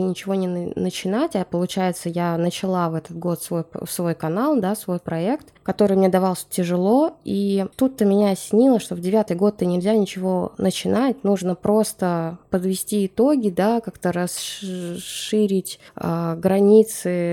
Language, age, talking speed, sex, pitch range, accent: Russian, 20-39, 140 wpm, female, 170-205 Hz, native